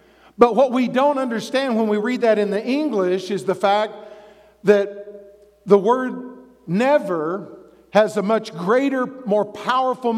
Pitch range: 200-255 Hz